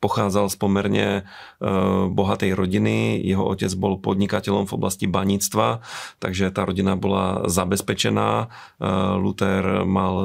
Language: Slovak